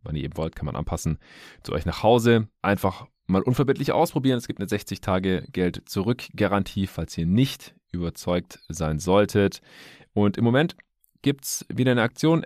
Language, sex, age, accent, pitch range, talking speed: German, male, 30-49, German, 80-110 Hz, 160 wpm